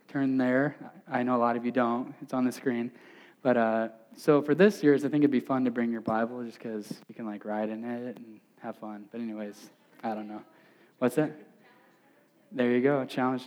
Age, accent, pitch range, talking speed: 10-29, American, 120-155 Hz, 225 wpm